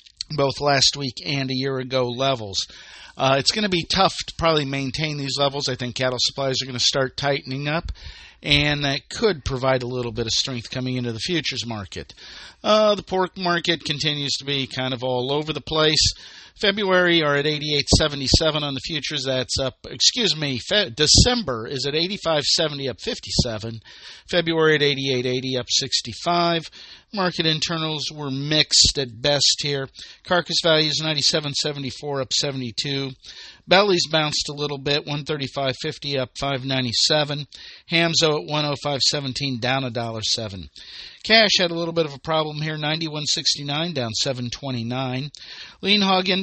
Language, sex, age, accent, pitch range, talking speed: English, male, 50-69, American, 130-165 Hz, 150 wpm